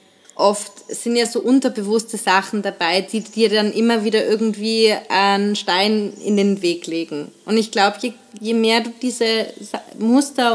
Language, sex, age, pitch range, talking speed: German, female, 20-39, 195-225 Hz, 160 wpm